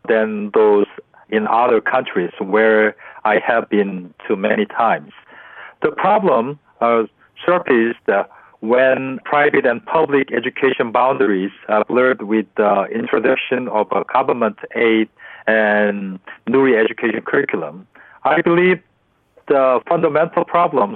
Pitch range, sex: 110-145 Hz, male